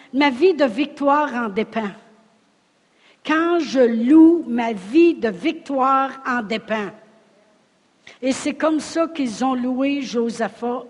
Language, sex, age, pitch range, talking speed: French, female, 60-79, 215-290 Hz, 140 wpm